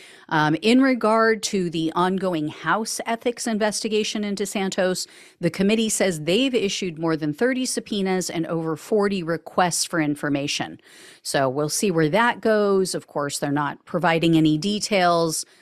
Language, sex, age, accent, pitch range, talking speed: English, female, 40-59, American, 155-230 Hz, 150 wpm